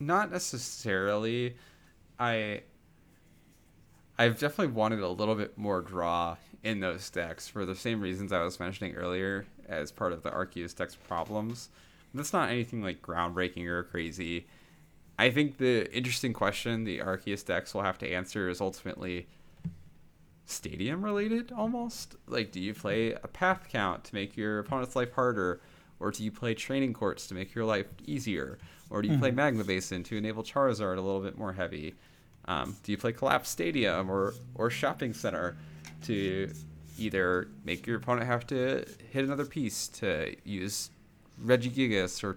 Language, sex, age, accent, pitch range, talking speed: English, male, 20-39, American, 90-120 Hz, 165 wpm